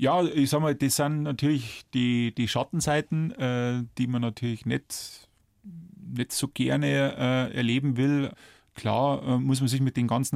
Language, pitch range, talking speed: German, 125-140 Hz, 170 wpm